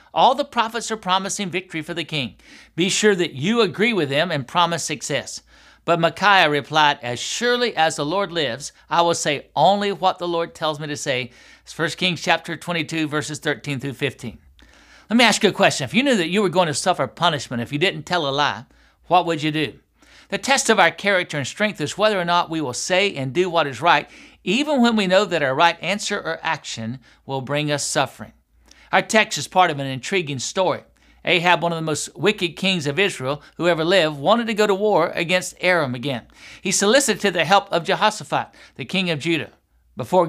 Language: English